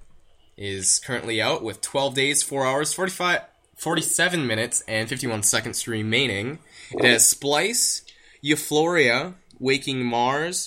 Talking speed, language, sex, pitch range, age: 120 wpm, English, male, 110-150 Hz, 20-39